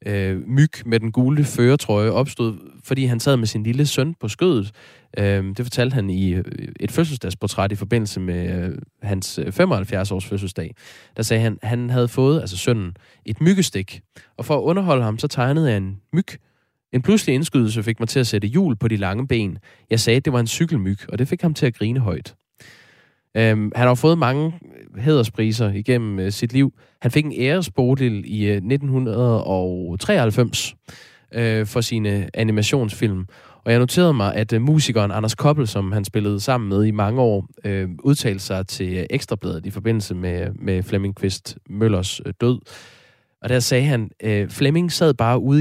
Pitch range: 100-130 Hz